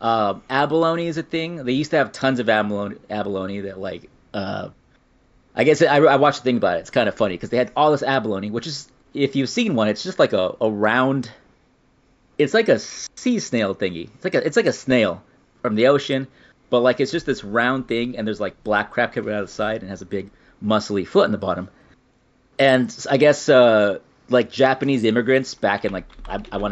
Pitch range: 105-135 Hz